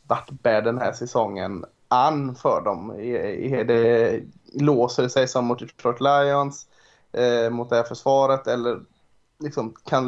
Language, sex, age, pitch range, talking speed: Swedish, male, 20-39, 115-130 Hz, 135 wpm